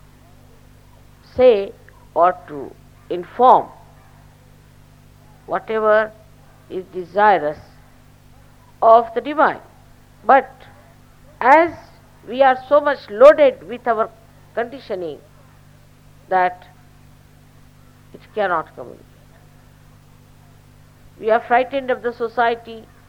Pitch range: 180-260 Hz